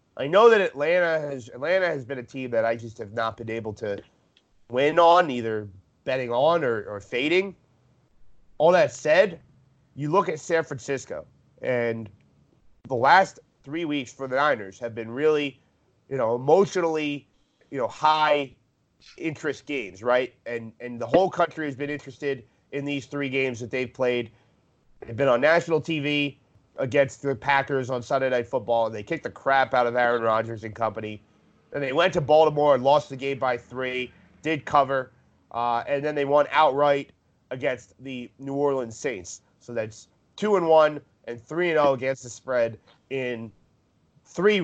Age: 30-49